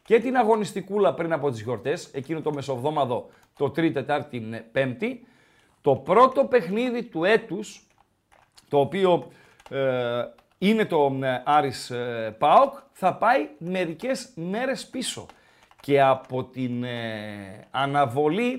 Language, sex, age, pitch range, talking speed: Greek, male, 40-59, 135-215 Hz, 205 wpm